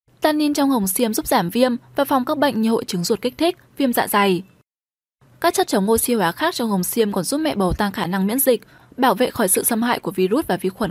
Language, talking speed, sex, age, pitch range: Vietnamese, 270 wpm, female, 10-29, 200-280 Hz